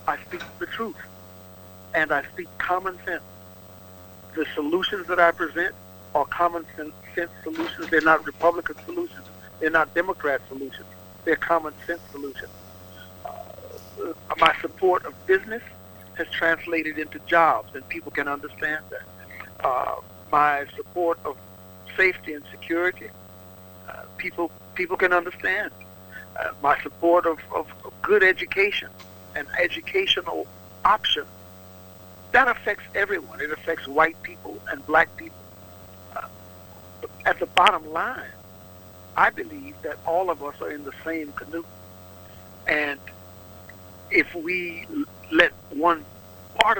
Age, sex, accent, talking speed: 60-79, male, American, 125 wpm